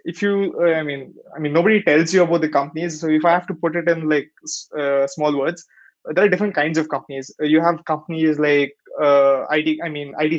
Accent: Indian